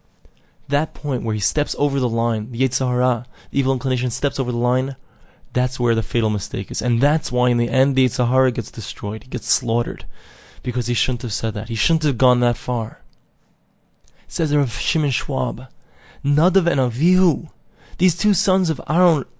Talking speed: 195 wpm